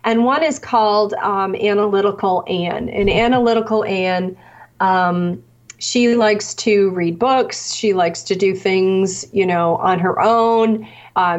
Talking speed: 140 wpm